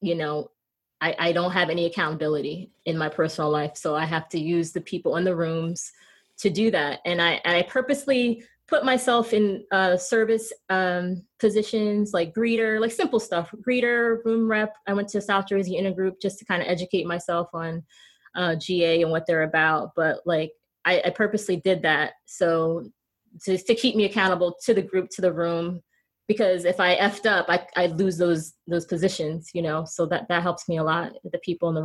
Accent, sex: American, female